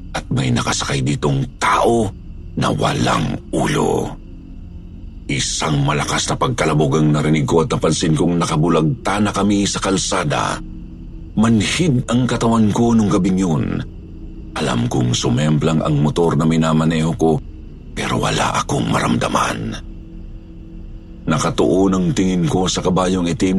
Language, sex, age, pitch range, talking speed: Filipino, male, 50-69, 80-110 Hz, 125 wpm